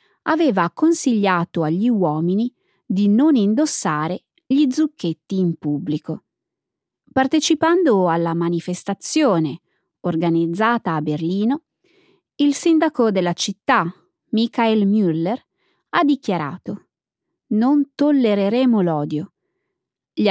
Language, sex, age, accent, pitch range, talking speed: Italian, female, 20-39, native, 170-275 Hz, 85 wpm